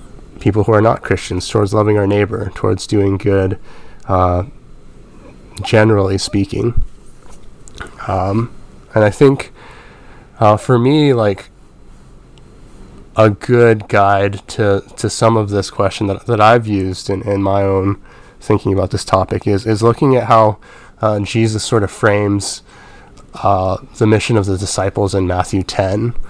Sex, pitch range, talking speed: male, 95-110 Hz, 145 wpm